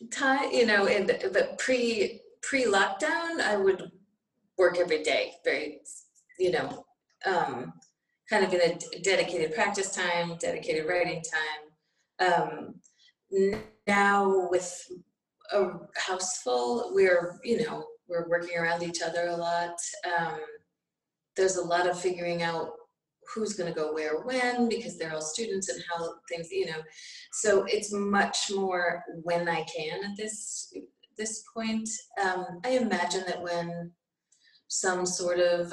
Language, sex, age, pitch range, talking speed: English, female, 30-49, 170-220 Hz, 140 wpm